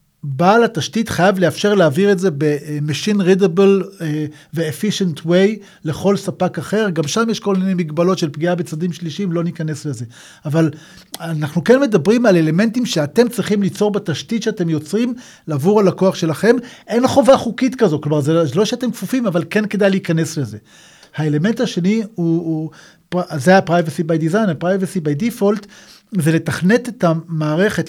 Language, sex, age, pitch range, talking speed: Hebrew, male, 40-59, 160-210 Hz, 150 wpm